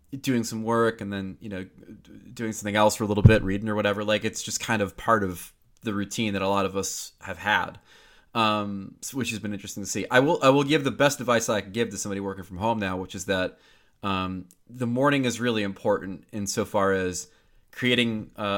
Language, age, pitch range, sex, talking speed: English, 20-39, 95-115 Hz, male, 235 wpm